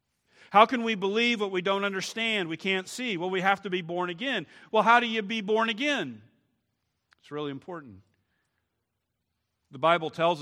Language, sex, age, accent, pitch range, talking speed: English, male, 50-69, American, 130-190 Hz, 180 wpm